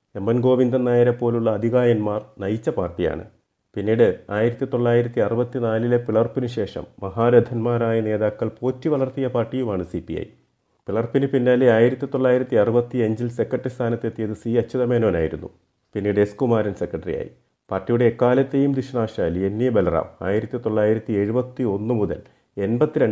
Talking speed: 105 wpm